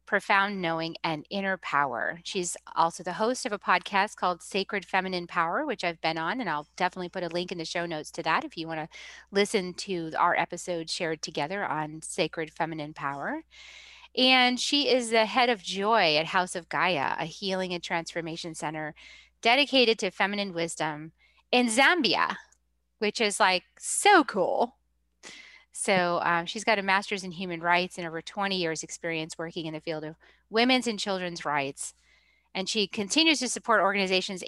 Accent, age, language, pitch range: American, 30-49, English, 165-205 Hz